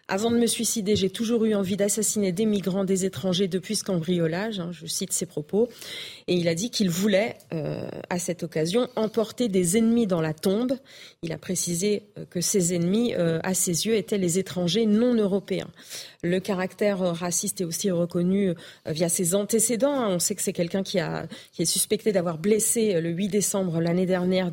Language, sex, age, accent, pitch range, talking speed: French, female, 40-59, French, 170-210 Hz, 205 wpm